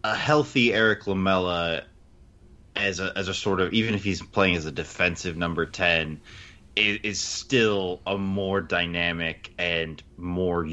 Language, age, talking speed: English, 20-39, 150 wpm